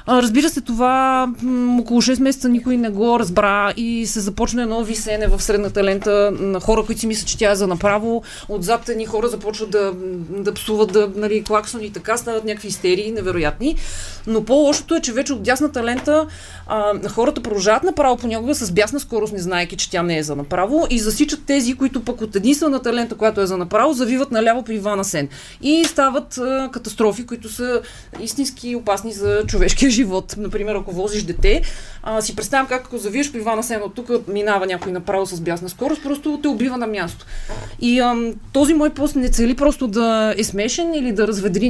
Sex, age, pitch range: female, 30-49, 200-250 Hz